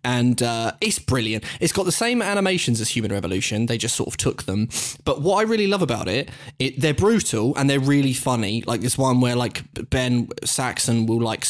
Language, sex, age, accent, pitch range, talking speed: English, male, 10-29, British, 115-150 Hz, 215 wpm